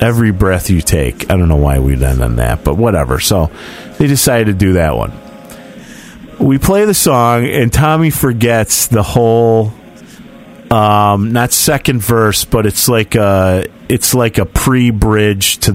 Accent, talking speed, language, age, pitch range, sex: American, 165 wpm, English, 40-59, 95-130 Hz, male